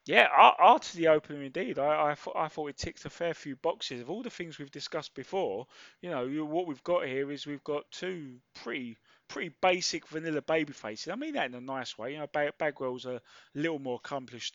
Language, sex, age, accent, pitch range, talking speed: English, male, 20-39, British, 120-155 Hz, 225 wpm